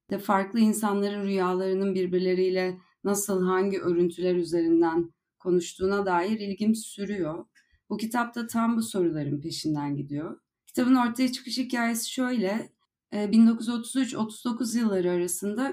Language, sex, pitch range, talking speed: Turkish, female, 175-215 Hz, 110 wpm